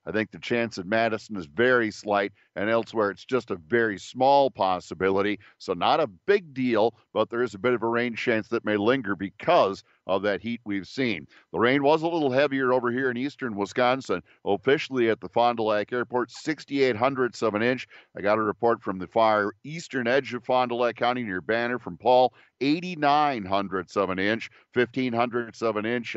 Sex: male